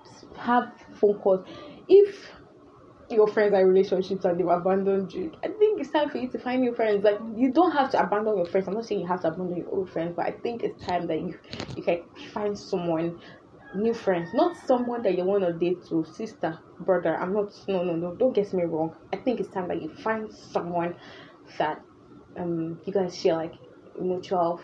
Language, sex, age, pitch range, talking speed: English, female, 10-29, 175-225 Hz, 210 wpm